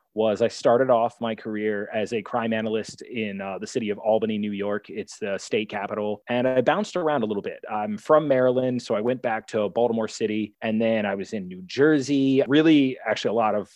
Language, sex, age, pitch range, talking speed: English, male, 20-39, 105-140 Hz, 225 wpm